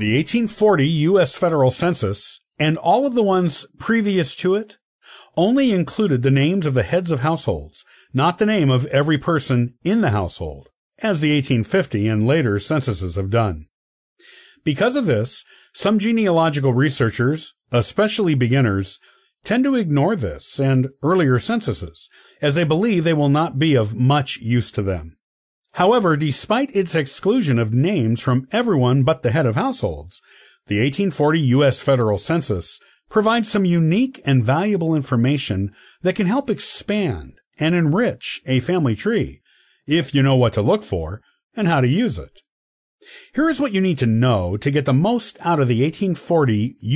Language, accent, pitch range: English, American, 120-180 Hz